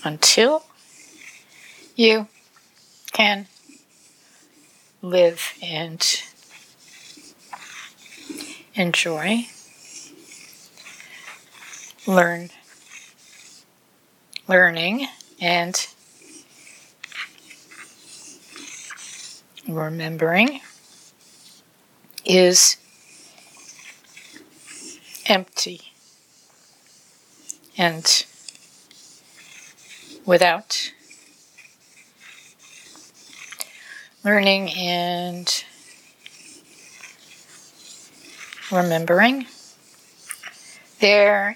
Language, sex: English, female